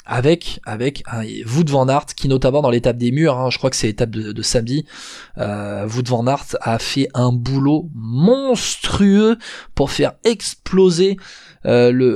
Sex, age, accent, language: male, 20-39, French, French